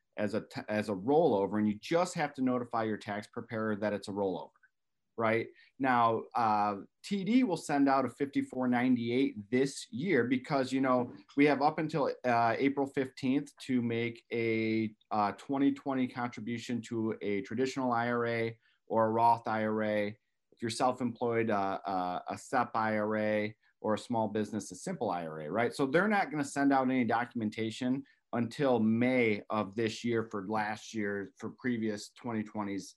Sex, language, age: male, English, 30-49